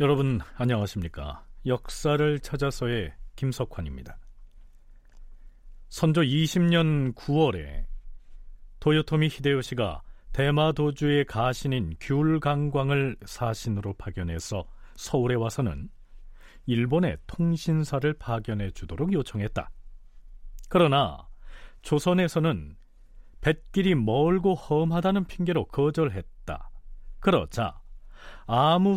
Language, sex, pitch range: Korean, male, 105-155 Hz